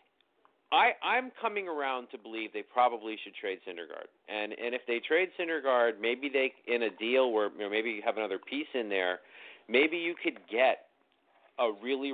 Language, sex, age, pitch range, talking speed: English, male, 40-59, 110-160 Hz, 190 wpm